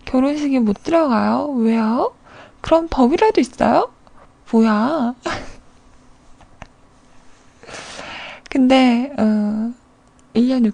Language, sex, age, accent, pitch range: Korean, female, 20-39, native, 220-300 Hz